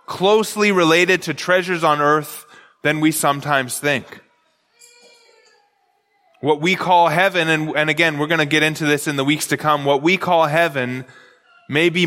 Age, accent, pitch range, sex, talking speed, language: 20-39, American, 165-205 Hz, male, 170 wpm, English